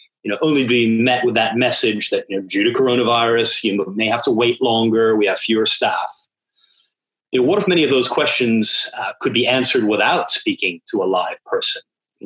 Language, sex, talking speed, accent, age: English, male, 210 wpm, American, 30-49